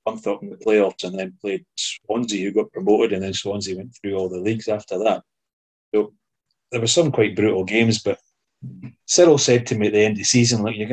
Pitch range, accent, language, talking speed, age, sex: 95-115 Hz, British, English, 225 wpm, 30-49, male